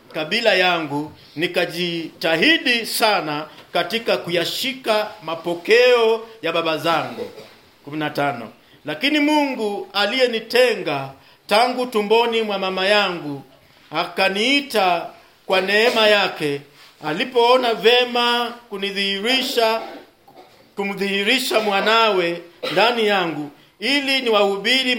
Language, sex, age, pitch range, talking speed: English, male, 50-69, 175-230 Hz, 75 wpm